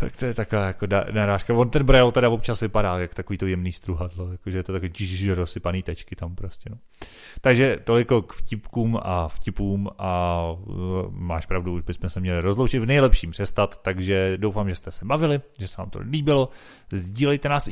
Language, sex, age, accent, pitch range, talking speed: Czech, male, 30-49, native, 95-115 Hz, 190 wpm